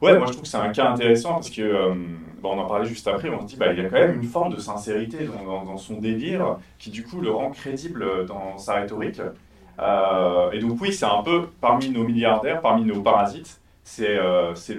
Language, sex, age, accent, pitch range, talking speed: French, male, 30-49, French, 100-125 Hz, 250 wpm